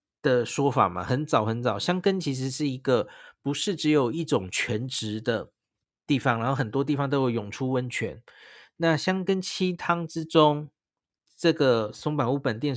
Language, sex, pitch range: Chinese, male, 120-155 Hz